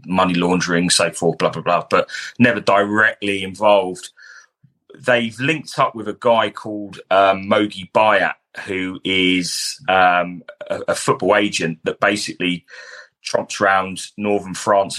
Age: 30-49